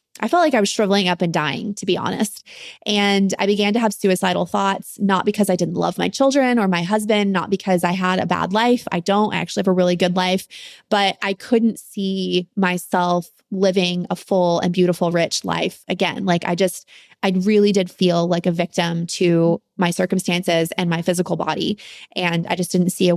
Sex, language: female, English